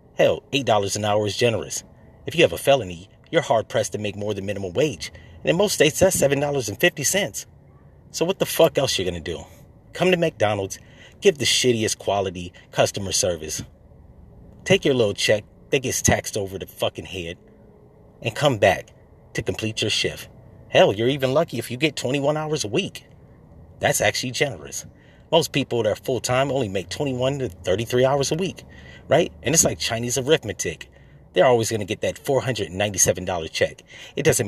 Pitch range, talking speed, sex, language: 100-140 Hz, 180 wpm, male, English